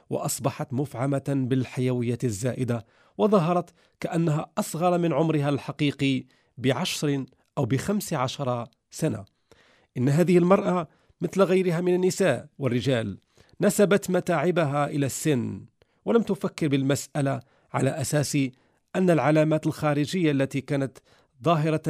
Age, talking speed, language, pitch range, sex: 40-59, 105 wpm, Arabic, 130-165 Hz, male